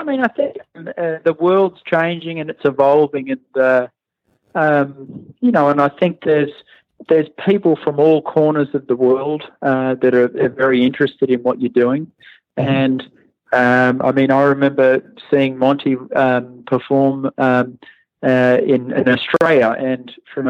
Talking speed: 160 wpm